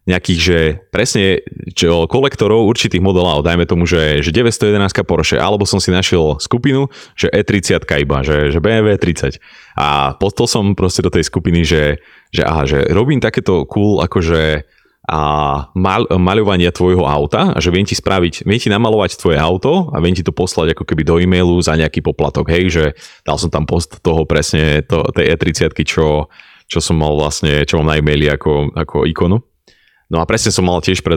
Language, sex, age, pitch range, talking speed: Slovak, male, 20-39, 80-105 Hz, 185 wpm